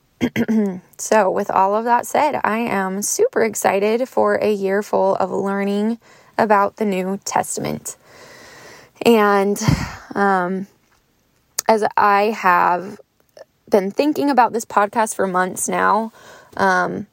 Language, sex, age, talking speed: English, female, 20-39, 120 wpm